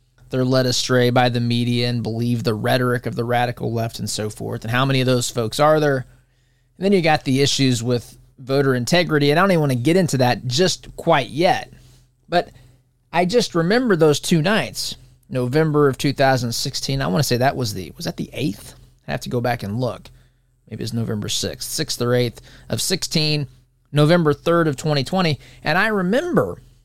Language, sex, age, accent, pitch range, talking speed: English, male, 20-39, American, 125-145 Hz, 200 wpm